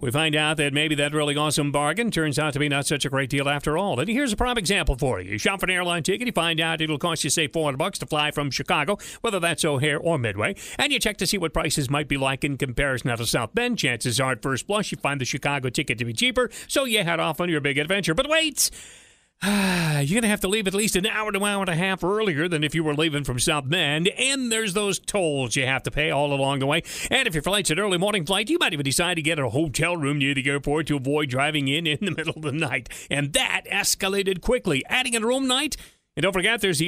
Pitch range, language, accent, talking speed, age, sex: 145-190 Hz, English, American, 275 wpm, 40-59, male